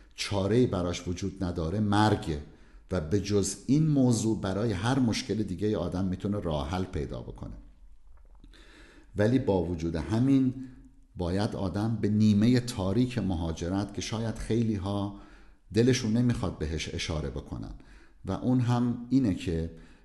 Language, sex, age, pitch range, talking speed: Persian, male, 50-69, 85-115 Hz, 130 wpm